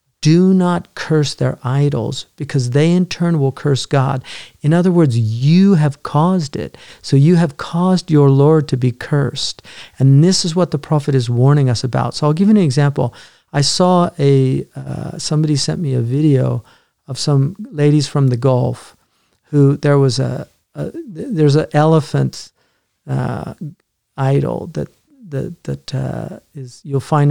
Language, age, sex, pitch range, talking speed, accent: English, 50-69, male, 125-150 Hz, 165 wpm, American